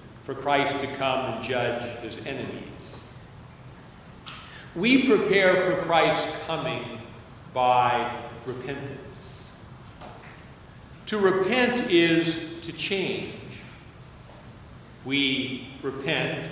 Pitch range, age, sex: 125-160 Hz, 50-69, male